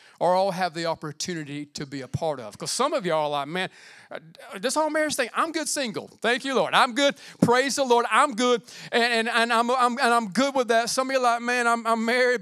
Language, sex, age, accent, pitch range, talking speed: English, male, 40-59, American, 170-240 Hz, 255 wpm